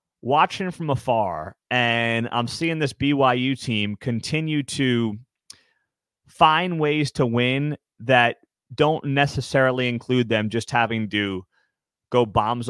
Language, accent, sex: English, American, male